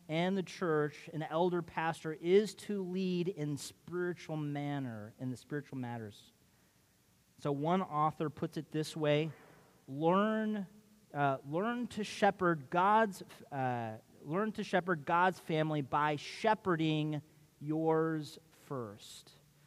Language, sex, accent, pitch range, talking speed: English, male, American, 145-180 Hz, 120 wpm